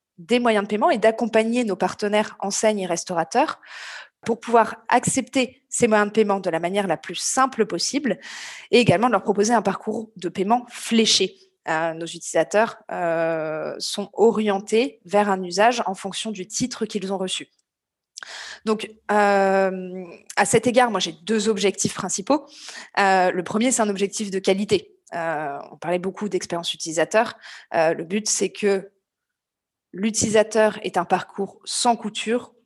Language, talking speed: English, 160 wpm